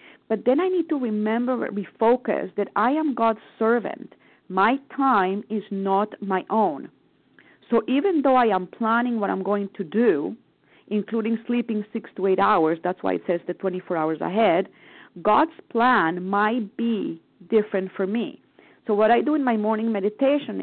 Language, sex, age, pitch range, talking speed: English, female, 40-59, 190-235 Hz, 170 wpm